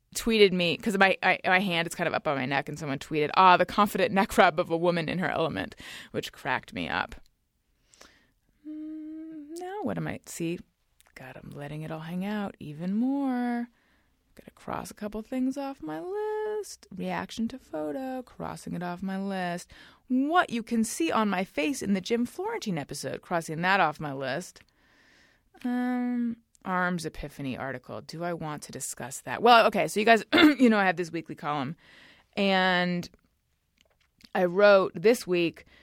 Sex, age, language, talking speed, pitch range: female, 20-39, English, 180 wpm, 155-225 Hz